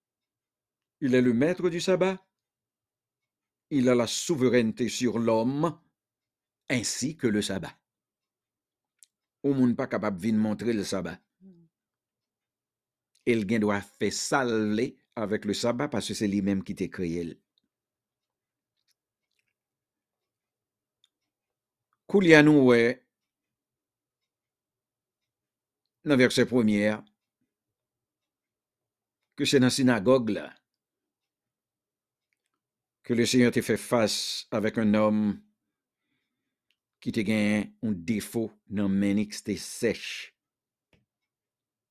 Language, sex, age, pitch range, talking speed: English, male, 60-79, 105-140 Hz, 90 wpm